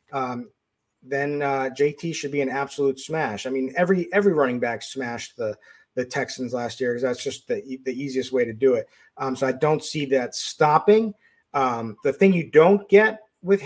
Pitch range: 130-185 Hz